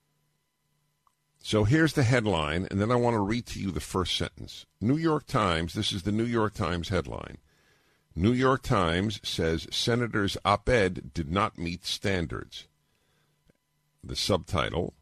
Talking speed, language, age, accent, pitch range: 150 wpm, English, 50-69, American, 80-115 Hz